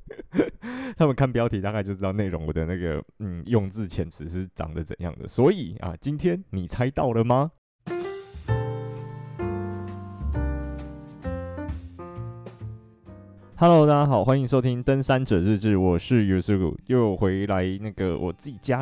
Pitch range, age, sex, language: 95-125 Hz, 20-39, male, Chinese